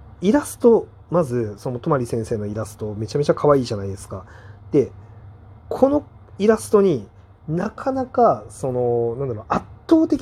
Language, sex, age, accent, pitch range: Japanese, male, 30-49, native, 110-170 Hz